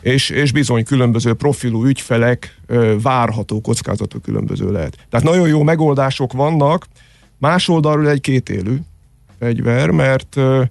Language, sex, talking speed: Hungarian, male, 130 wpm